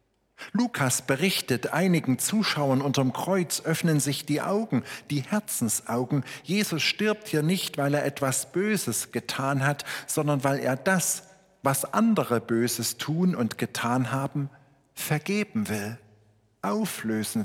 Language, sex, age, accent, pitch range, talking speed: German, male, 50-69, German, 110-145 Hz, 125 wpm